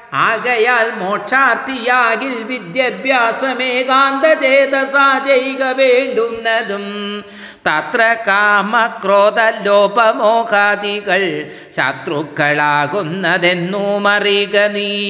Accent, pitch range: native, 205-250 Hz